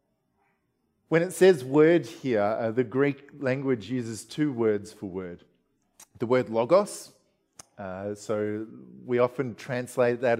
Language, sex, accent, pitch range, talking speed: English, male, Australian, 120-150 Hz, 135 wpm